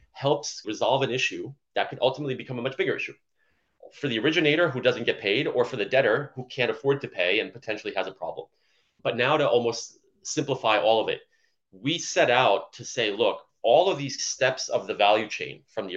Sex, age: male, 30-49